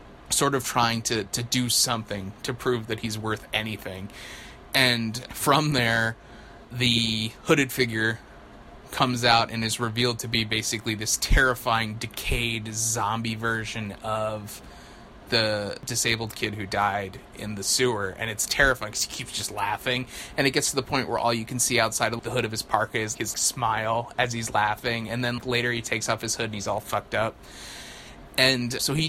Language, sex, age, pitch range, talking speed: English, male, 20-39, 110-125 Hz, 185 wpm